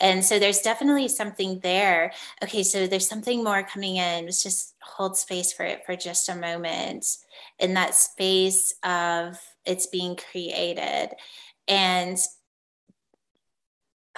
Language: English